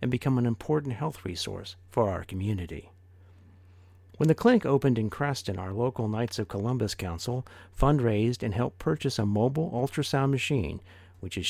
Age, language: 50-69, English